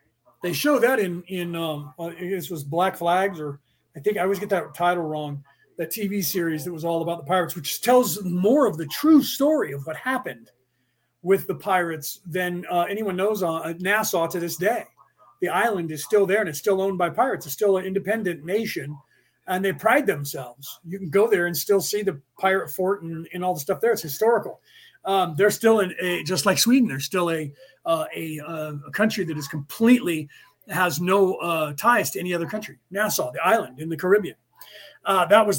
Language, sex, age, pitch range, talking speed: English, male, 30-49, 165-210 Hz, 210 wpm